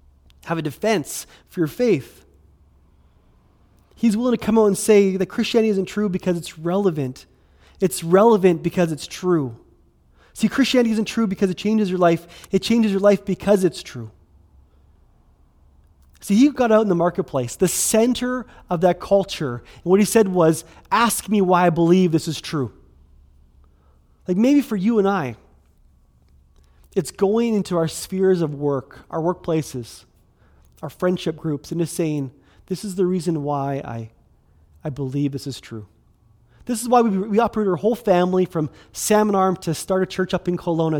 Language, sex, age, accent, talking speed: English, male, 20-39, American, 170 wpm